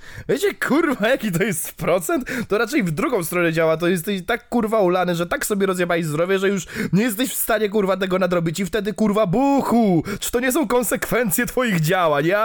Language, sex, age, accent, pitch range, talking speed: Polish, male, 20-39, native, 160-205 Hz, 205 wpm